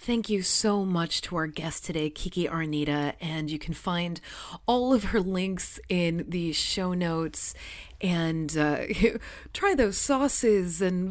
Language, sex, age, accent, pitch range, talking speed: English, female, 30-49, American, 150-185 Hz, 150 wpm